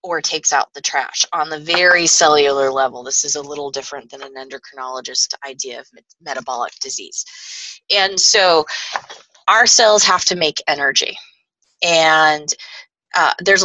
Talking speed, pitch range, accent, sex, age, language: 150 wpm, 145-190 Hz, American, female, 20-39, English